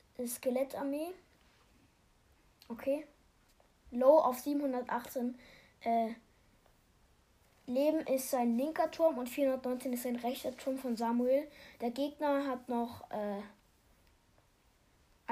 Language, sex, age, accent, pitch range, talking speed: German, female, 20-39, German, 235-285 Hz, 95 wpm